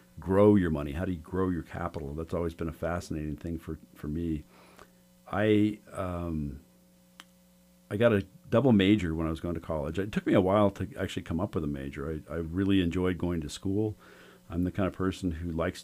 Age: 50-69